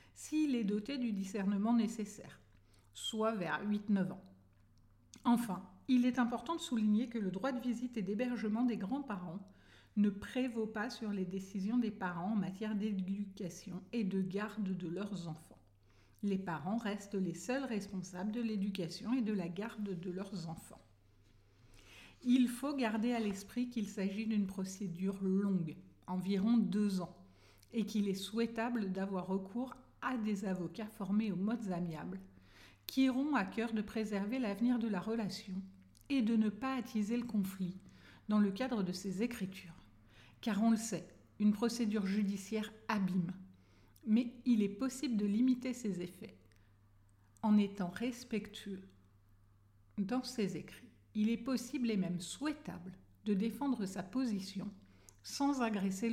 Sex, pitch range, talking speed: female, 180-230 Hz, 150 wpm